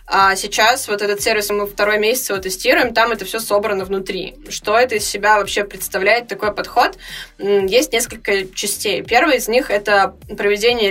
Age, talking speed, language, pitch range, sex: 20-39, 175 wpm, Russian, 200-230 Hz, female